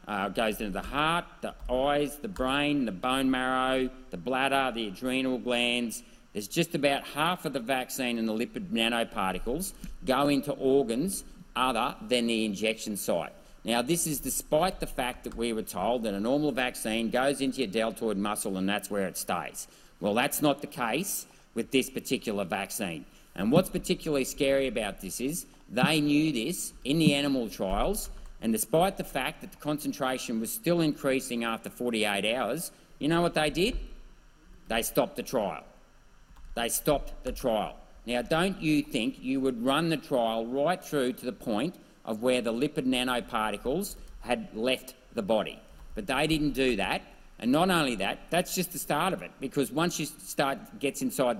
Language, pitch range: English, 115-150 Hz